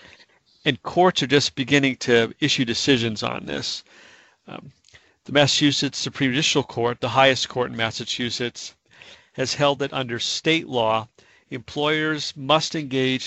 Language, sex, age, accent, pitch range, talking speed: English, male, 50-69, American, 120-140 Hz, 135 wpm